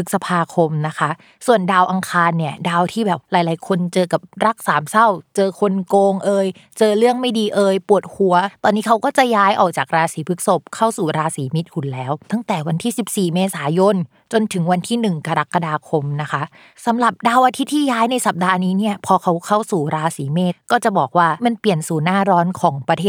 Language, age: Thai, 20-39